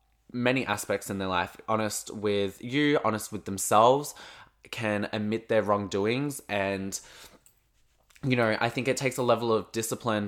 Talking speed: 150 wpm